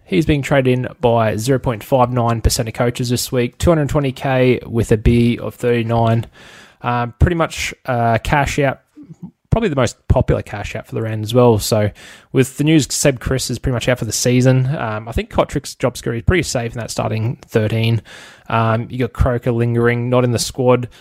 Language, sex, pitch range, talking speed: English, male, 110-130 Hz, 195 wpm